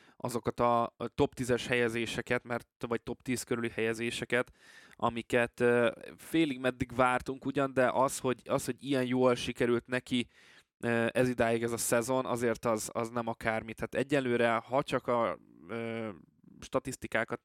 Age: 20-39